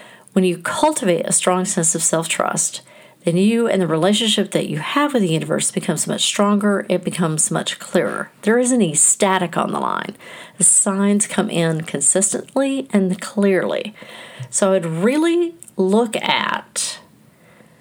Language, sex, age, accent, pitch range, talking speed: English, female, 50-69, American, 180-220 Hz, 155 wpm